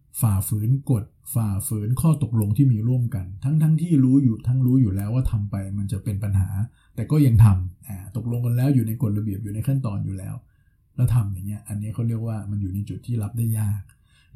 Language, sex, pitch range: Thai, male, 105-130 Hz